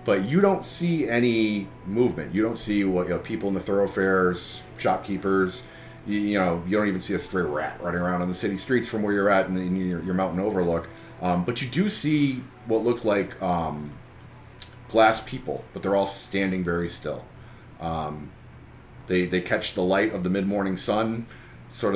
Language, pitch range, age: English, 90-120 Hz, 30-49